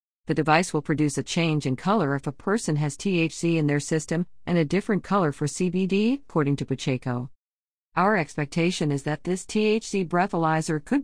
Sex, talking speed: female, 180 wpm